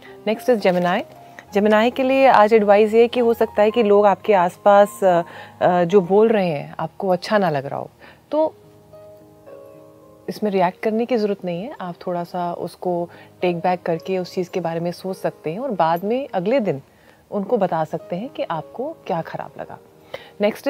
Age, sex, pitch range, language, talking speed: 30-49, female, 175-225 Hz, Hindi, 190 wpm